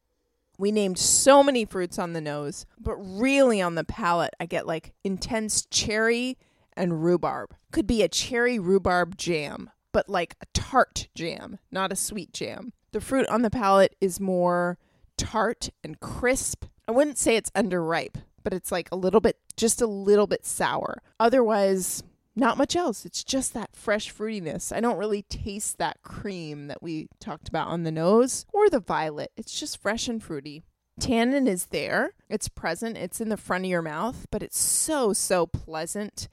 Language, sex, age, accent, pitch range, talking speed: English, female, 20-39, American, 180-225 Hz, 180 wpm